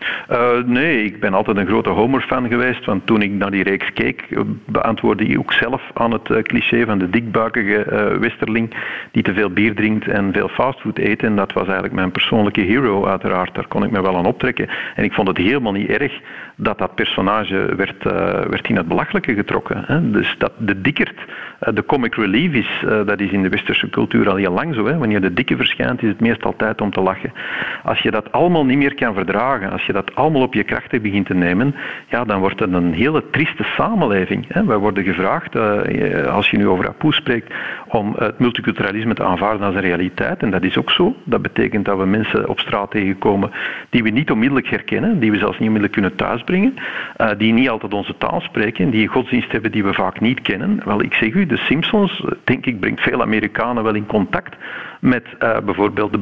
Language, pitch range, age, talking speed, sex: Dutch, 100-125 Hz, 50-69, 210 wpm, male